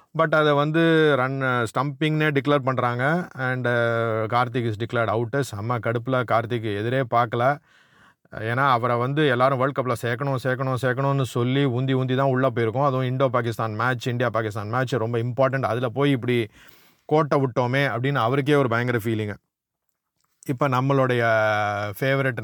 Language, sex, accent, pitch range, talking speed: Tamil, male, native, 120-145 Hz, 145 wpm